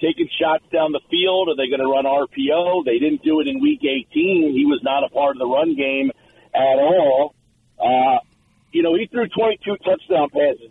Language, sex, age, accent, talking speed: English, male, 50-69, American, 205 wpm